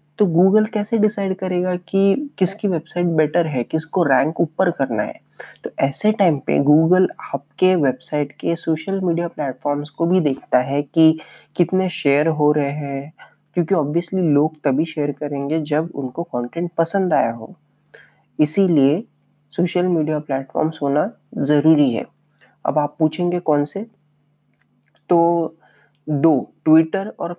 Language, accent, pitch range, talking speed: Hindi, native, 145-170 Hz, 140 wpm